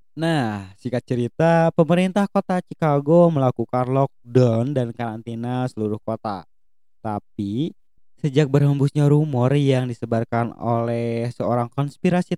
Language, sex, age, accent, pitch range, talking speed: Indonesian, male, 20-39, native, 110-140 Hz, 100 wpm